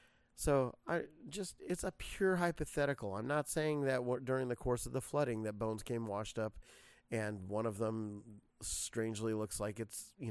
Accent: American